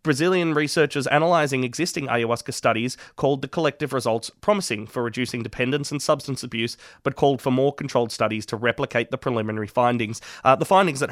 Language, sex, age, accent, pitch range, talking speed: English, male, 30-49, Australian, 120-150 Hz, 175 wpm